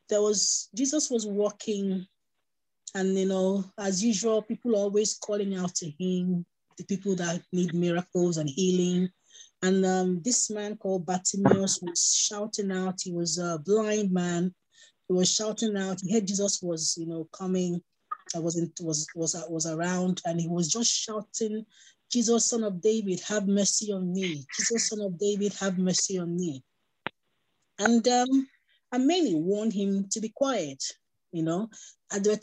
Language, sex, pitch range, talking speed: English, female, 160-210 Hz, 165 wpm